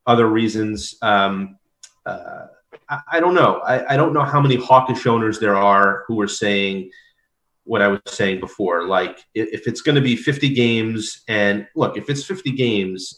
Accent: American